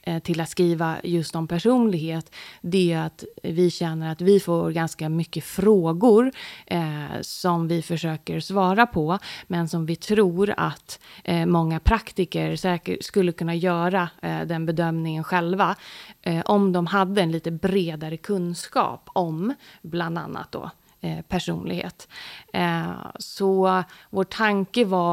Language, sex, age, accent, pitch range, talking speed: Swedish, female, 30-49, native, 160-190 Hz, 125 wpm